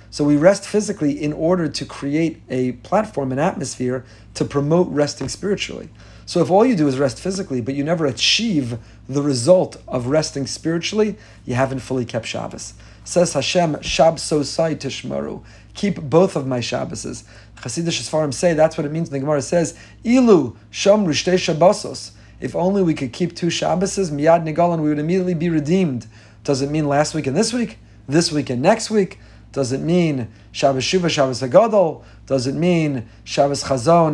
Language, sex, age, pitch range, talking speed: English, male, 40-59, 125-170 Hz, 170 wpm